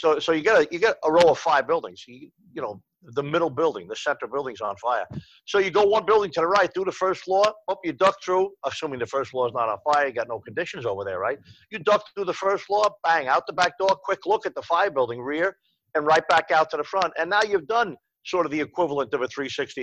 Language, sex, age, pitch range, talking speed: English, male, 50-69, 150-200 Hz, 270 wpm